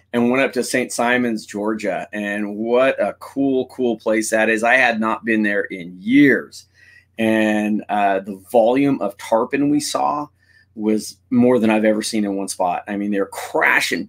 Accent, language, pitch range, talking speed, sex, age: American, English, 105-125 Hz, 185 wpm, male, 30-49